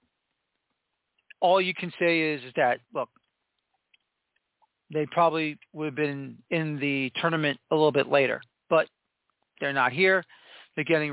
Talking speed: 140 wpm